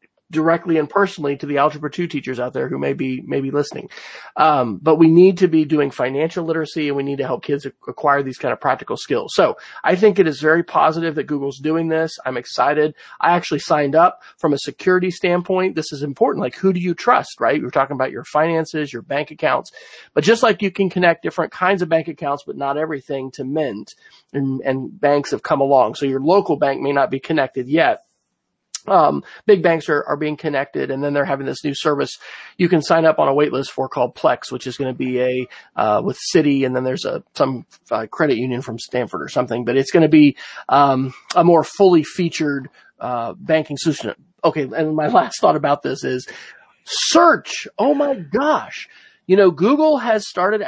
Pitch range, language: 140-175 Hz, English